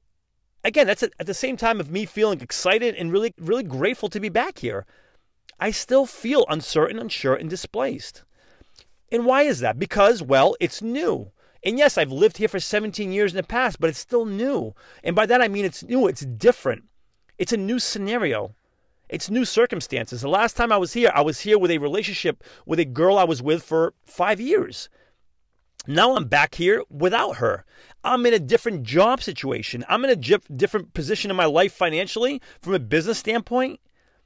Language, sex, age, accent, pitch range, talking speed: English, male, 30-49, American, 165-235 Hz, 195 wpm